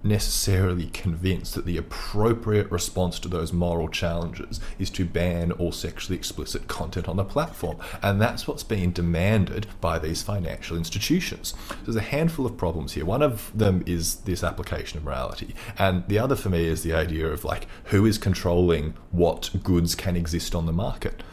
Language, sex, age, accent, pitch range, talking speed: English, male, 30-49, Australian, 85-105 Hz, 175 wpm